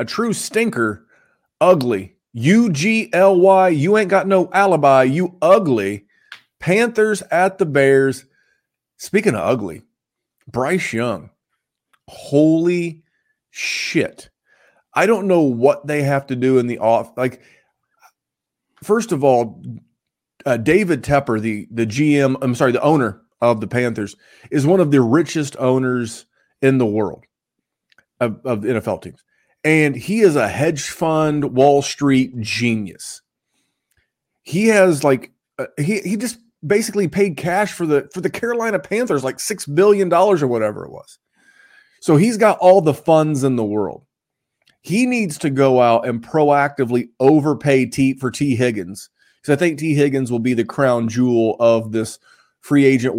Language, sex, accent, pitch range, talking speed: English, male, American, 125-190 Hz, 150 wpm